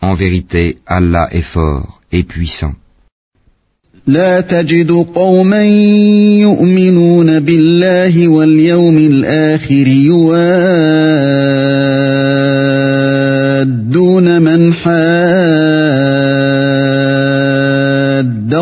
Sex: male